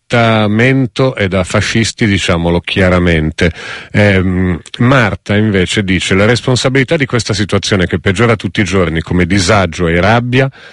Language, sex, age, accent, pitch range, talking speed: Italian, male, 40-59, native, 85-110 Hz, 130 wpm